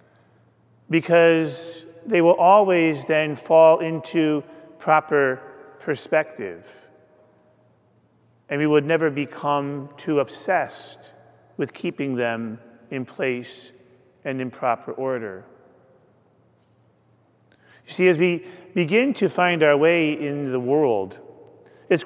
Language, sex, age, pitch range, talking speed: English, male, 40-59, 140-175 Hz, 105 wpm